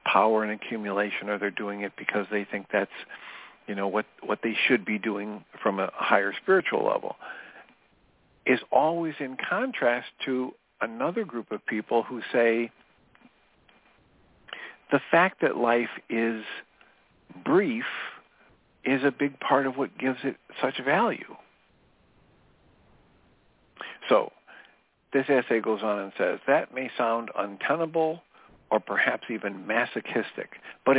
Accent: American